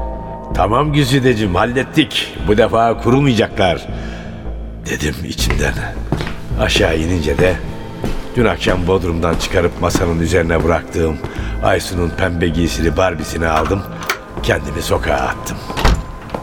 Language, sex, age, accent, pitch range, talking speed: Turkish, male, 60-79, native, 95-115 Hz, 95 wpm